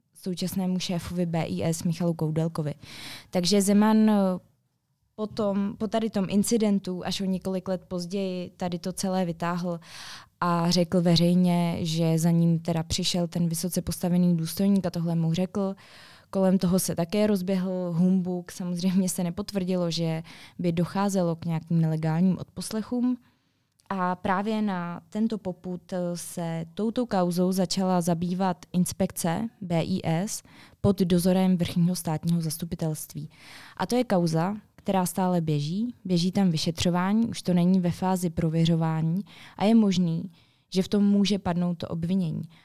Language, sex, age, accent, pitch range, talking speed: Czech, female, 20-39, native, 170-195 Hz, 135 wpm